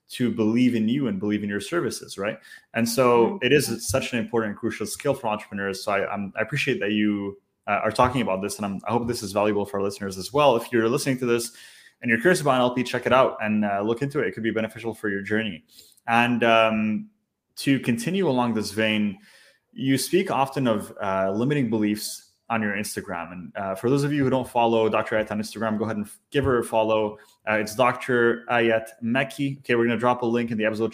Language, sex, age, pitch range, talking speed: English, male, 20-39, 105-125 Hz, 235 wpm